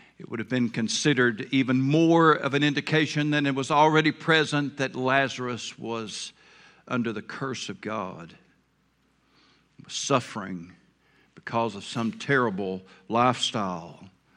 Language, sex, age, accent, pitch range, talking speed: English, male, 60-79, American, 120-155 Hz, 120 wpm